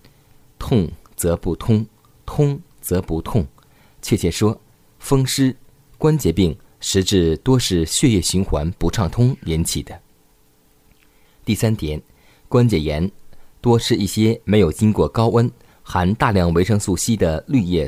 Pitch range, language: 85-120 Hz, Chinese